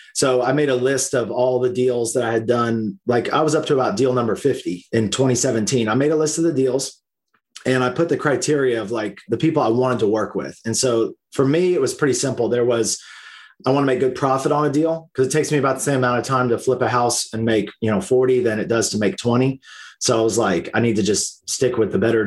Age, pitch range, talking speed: 30-49, 115-145 Hz, 270 wpm